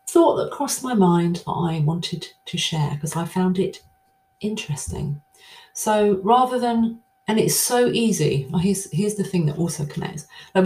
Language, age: English, 40-59